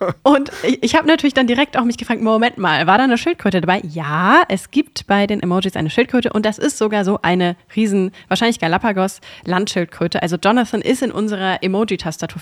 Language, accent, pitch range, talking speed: German, German, 185-235 Hz, 195 wpm